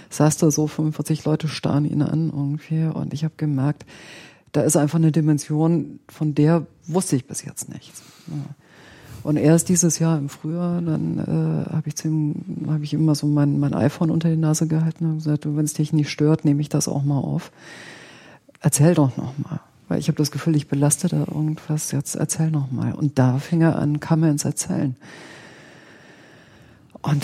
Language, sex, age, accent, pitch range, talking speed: German, female, 40-59, German, 150-165 Hz, 195 wpm